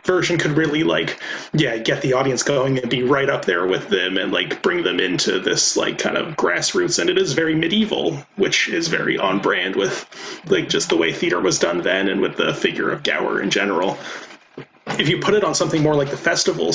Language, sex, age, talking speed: English, male, 30-49, 225 wpm